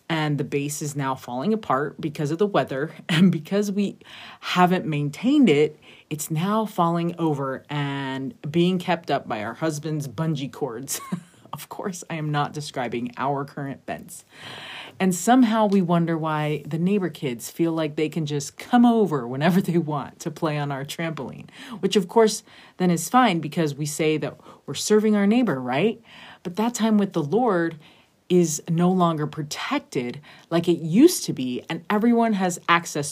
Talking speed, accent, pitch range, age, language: 175 wpm, American, 150-200 Hz, 30-49, English